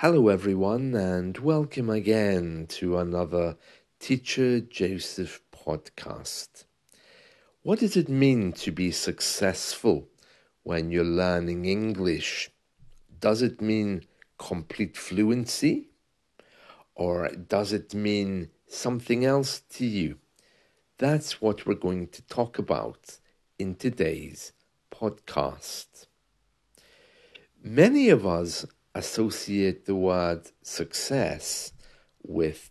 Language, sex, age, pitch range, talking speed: English, male, 50-69, 90-120 Hz, 95 wpm